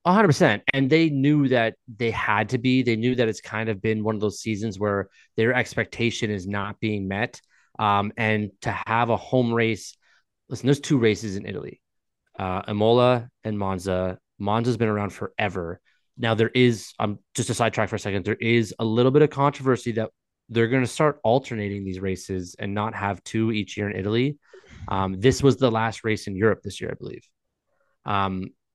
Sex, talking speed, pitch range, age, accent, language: male, 200 wpm, 100-120 Hz, 20-39, American, English